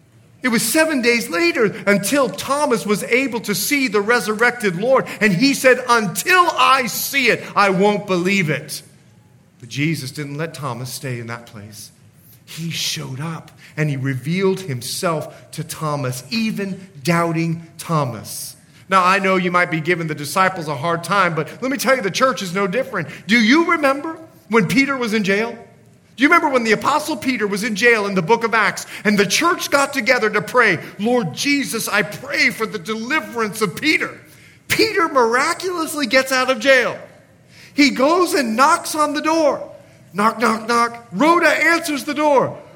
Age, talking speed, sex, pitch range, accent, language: 40-59, 175 wpm, male, 170-285 Hz, American, English